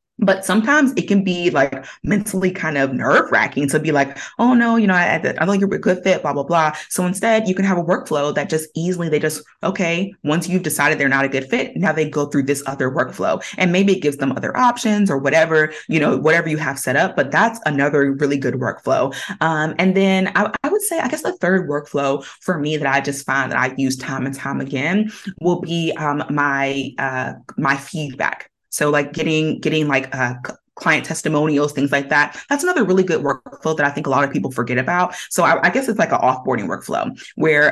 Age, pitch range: 20-39, 145-195 Hz